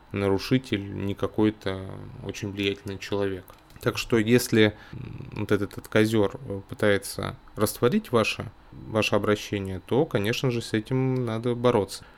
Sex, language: male, Russian